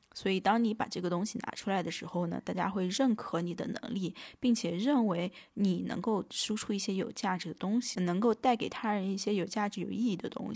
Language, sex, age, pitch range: Chinese, female, 20-39, 185-240 Hz